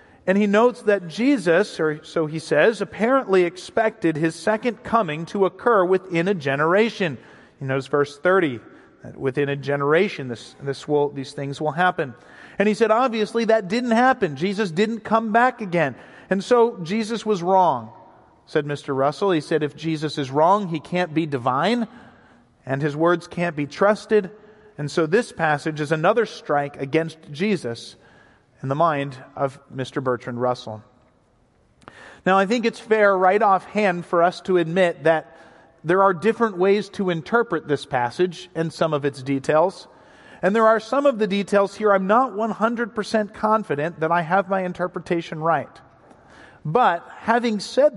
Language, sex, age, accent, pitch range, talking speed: English, male, 40-59, American, 150-215 Hz, 165 wpm